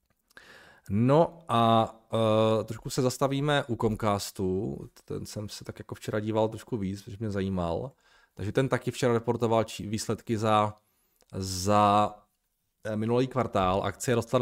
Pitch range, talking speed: 100-120 Hz, 145 wpm